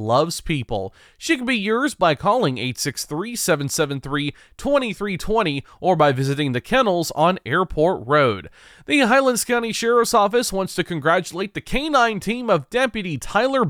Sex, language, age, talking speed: male, English, 30-49, 135 wpm